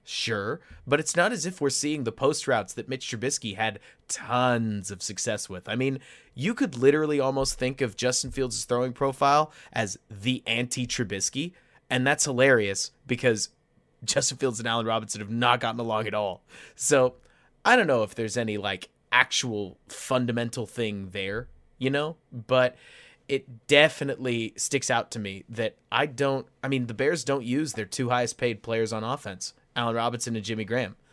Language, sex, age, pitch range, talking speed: English, male, 30-49, 110-135 Hz, 175 wpm